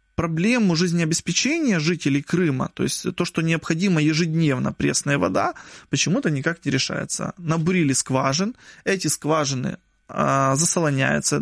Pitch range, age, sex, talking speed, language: 145-185 Hz, 20-39, male, 110 wpm, Russian